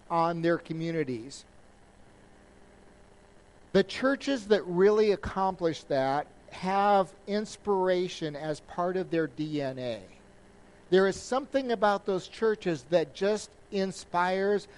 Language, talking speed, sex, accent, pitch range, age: English, 100 wpm, male, American, 160-200 Hz, 50-69